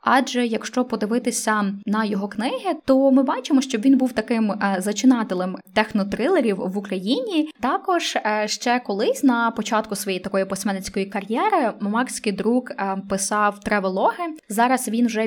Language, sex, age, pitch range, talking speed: Ukrainian, female, 20-39, 195-240 Hz, 130 wpm